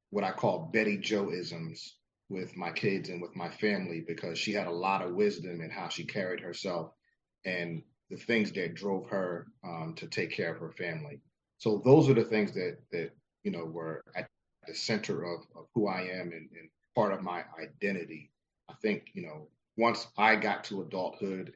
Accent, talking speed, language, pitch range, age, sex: American, 195 wpm, English, 85-100 Hz, 40-59, male